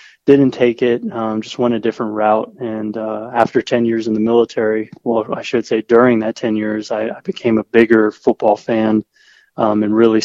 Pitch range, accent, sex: 110-115 Hz, American, male